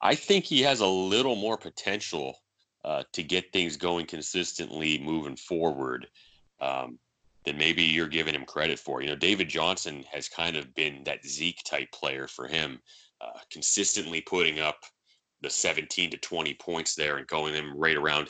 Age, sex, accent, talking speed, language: 30-49, male, American, 175 wpm, English